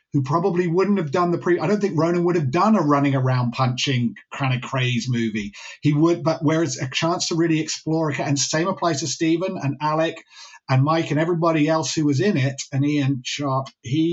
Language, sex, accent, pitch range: English, male, British, 130-170 Hz